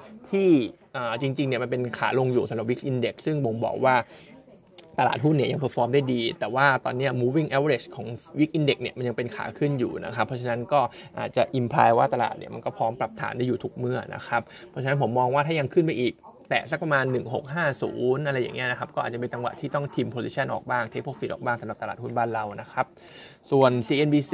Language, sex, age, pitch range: Thai, male, 20-39, 120-145 Hz